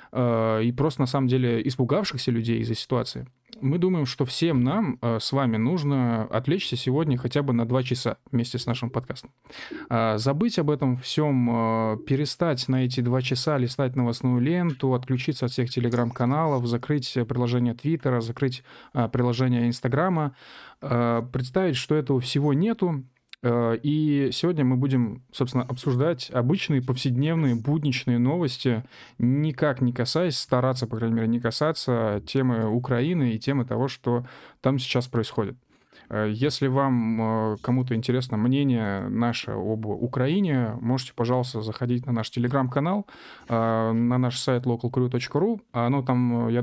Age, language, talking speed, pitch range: 20-39, Russian, 135 wpm, 120-140 Hz